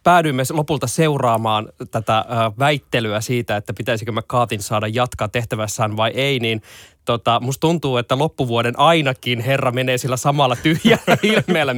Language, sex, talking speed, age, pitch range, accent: Finnish, male, 145 wpm, 20-39, 115-165 Hz, native